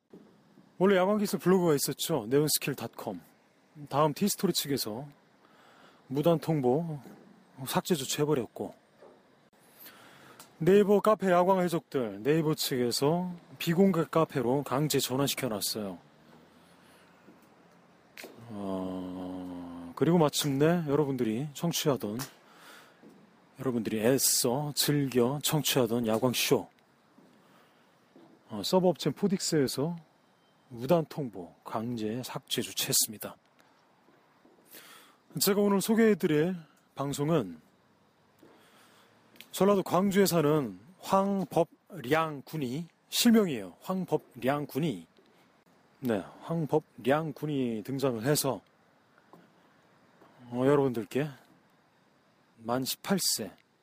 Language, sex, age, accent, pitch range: Korean, male, 30-49, native, 130-175 Hz